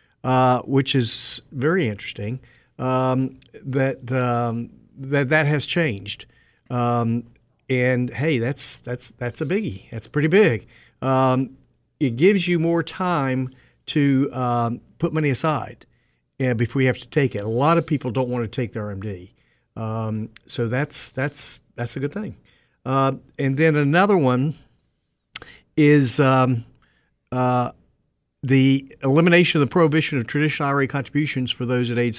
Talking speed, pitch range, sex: 145 wpm, 120-140 Hz, male